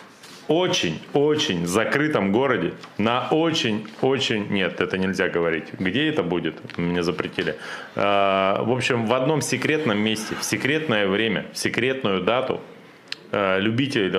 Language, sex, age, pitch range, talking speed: Russian, male, 30-49, 95-135 Hz, 115 wpm